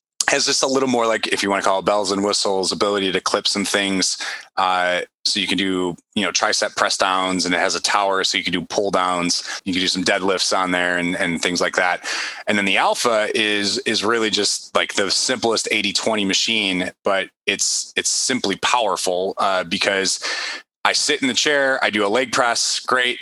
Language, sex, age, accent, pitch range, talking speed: English, male, 30-49, American, 95-120 Hz, 215 wpm